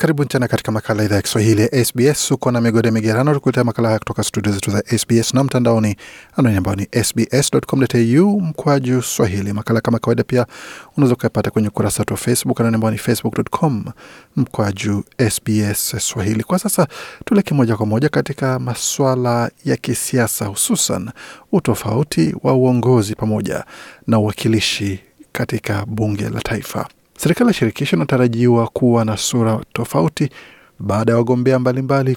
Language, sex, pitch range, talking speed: Swahili, male, 110-130 Hz, 135 wpm